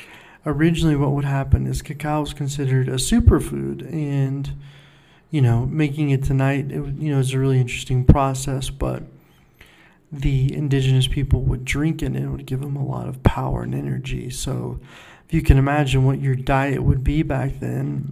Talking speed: 180 wpm